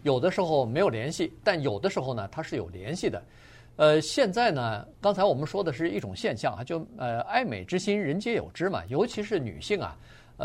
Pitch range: 115-165 Hz